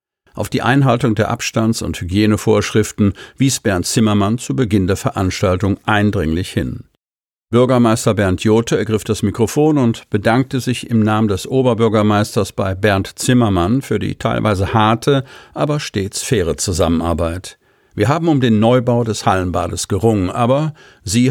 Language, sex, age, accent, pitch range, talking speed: German, male, 50-69, German, 100-125 Hz, 140 wpm